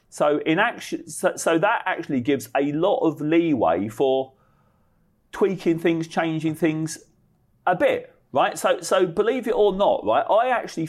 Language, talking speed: English, 160 wpm